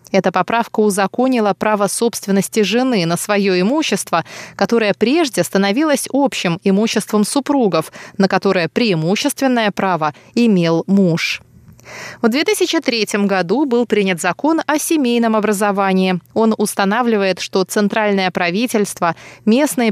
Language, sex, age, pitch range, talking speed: Russian, female, 20-39, 190-245 Hz, 110 wpm